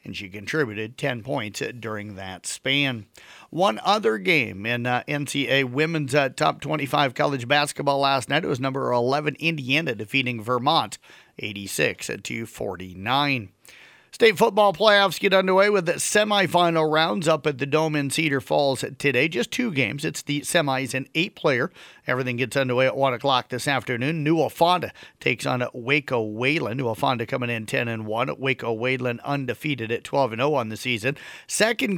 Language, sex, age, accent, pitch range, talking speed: English, male, 50-69, American, 120-150 Hz, 160 wpm